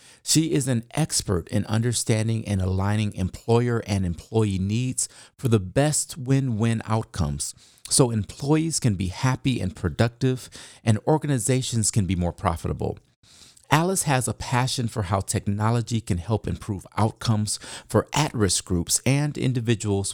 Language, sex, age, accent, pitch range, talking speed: English, male, 40-59, American, 100-130 Hz, 135 wpm